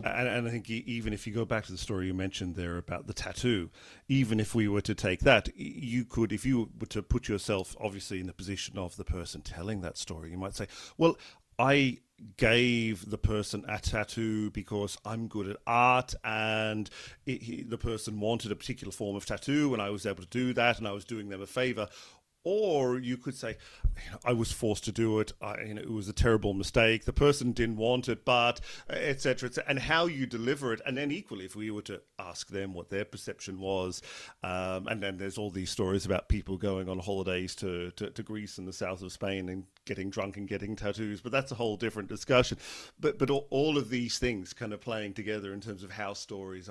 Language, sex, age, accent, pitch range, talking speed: English, male, 40-59, British, 95-120 Hz, 220 wpm